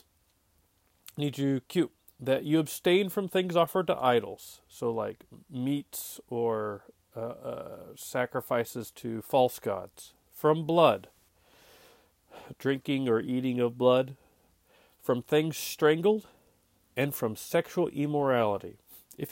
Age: 40-59